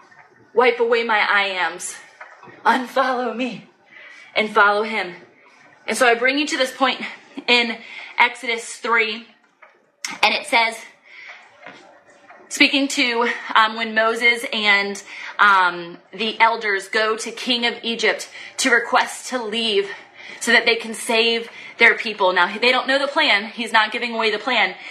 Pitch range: 210-250 Hz